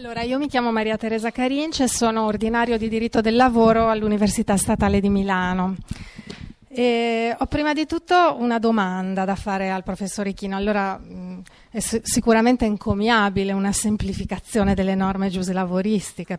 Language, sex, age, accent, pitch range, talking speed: Italian, female, 40-59, native, 190-235 Hz, 145 wpm